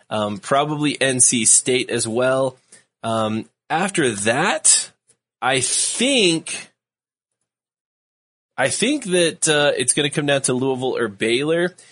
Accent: American